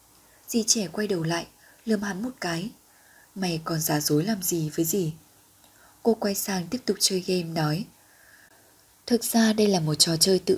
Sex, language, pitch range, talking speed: female, Vietnamese, 165-215 Hz, 185 wpm